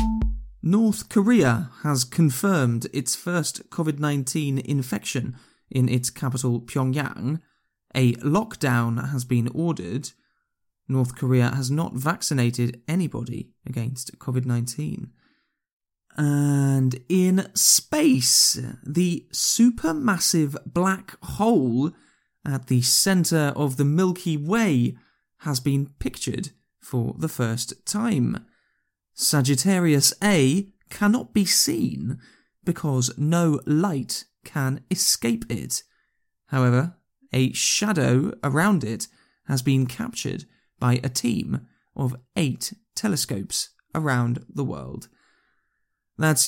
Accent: British